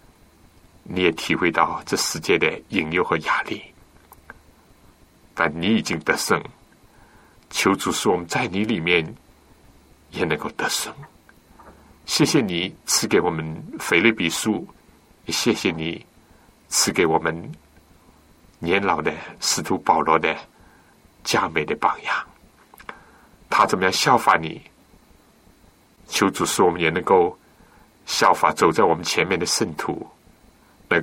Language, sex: Chinese, male